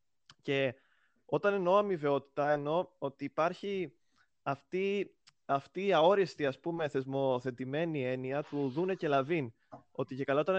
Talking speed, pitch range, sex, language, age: 130 wpm, 135-180 Hz, male, Greek, 20-39